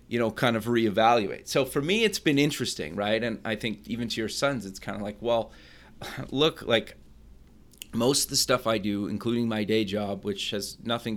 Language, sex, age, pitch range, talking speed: English, male, 30-49, 105-115 Hz, 210 wpm